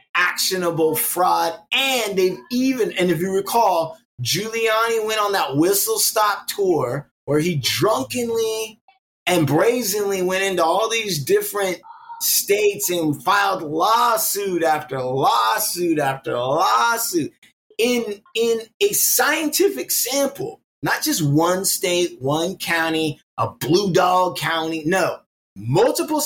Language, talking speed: English, 115 wpm